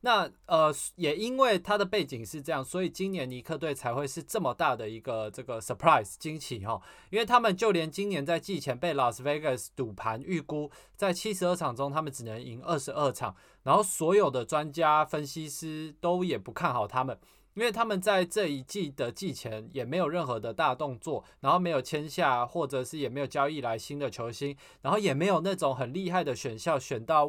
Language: Chinese